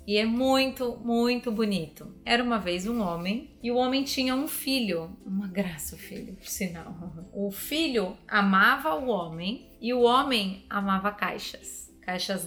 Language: Portuguese